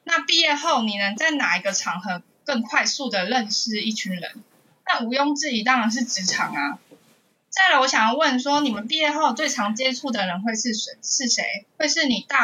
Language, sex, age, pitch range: Chinese, female, 20-39, 205-280 Hz